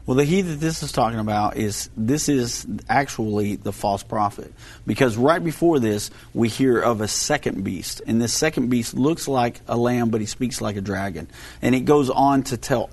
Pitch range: 110-135 Hz